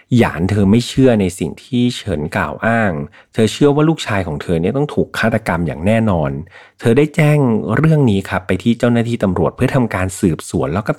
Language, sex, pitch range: Thai, male, 90-120 Hz